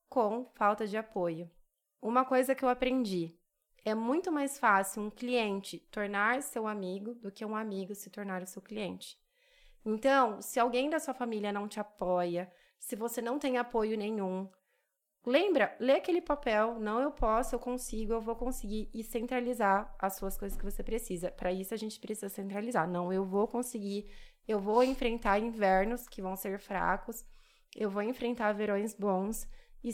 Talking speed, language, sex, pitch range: 170 wpm, Portuguese, female, 200-245 Hz